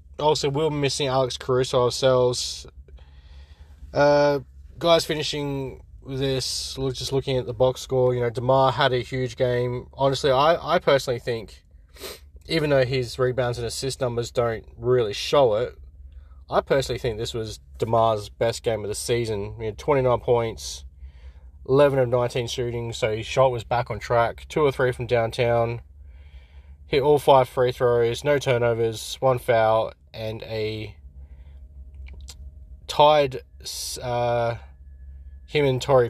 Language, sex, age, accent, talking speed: English, male, 20-39, Australian, 145 wpm